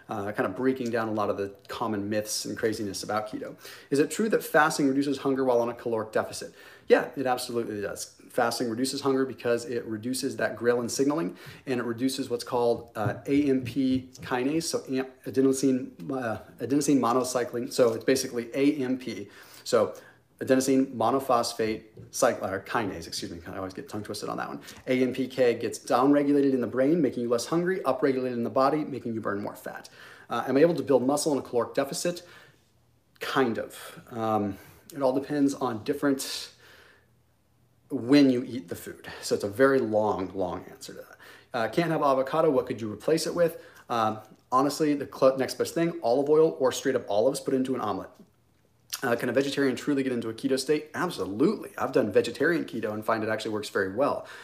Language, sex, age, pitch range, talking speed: English, male, 30-49, 115-140 Hz, 190 wpm